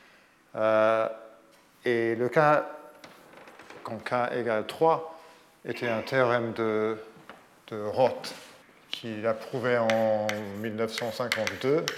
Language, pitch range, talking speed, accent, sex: French, 110-130 Hz, 95 wpm, French, male